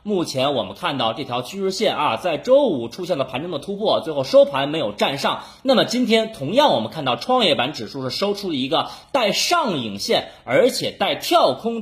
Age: 30-49